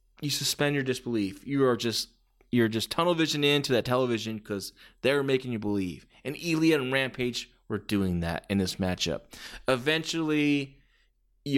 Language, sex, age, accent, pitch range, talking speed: English, male, 20-39, American, 110-145 Hz, 160 wpm